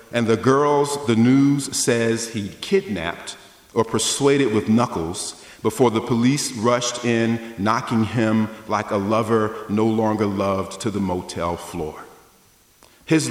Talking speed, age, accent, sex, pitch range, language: 135 wpm, 40-59, American, male, 105-125 Hz, English